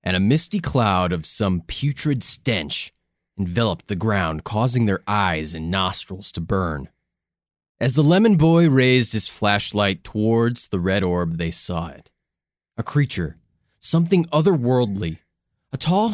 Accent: American